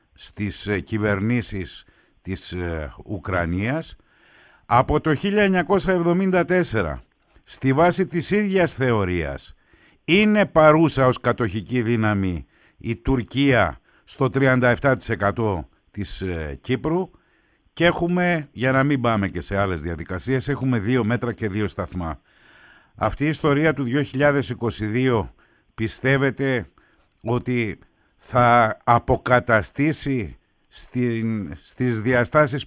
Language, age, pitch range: Greek, 60-79, 105-145 Hz